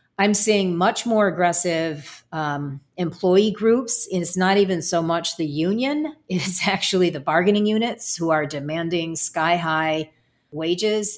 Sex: female